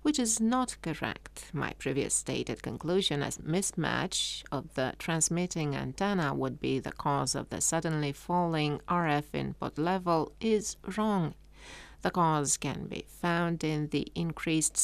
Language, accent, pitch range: English, Italian, 150-180 Hz